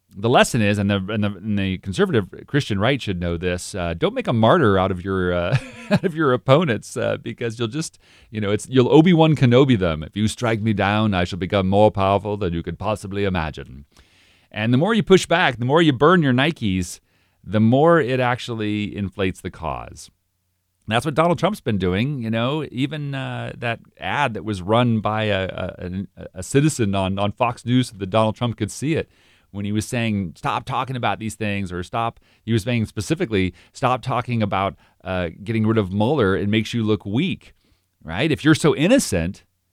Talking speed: 210 wpm